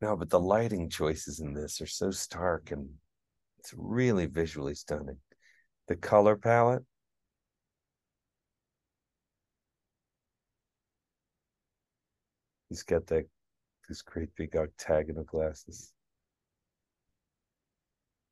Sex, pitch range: male, 80-95 Hz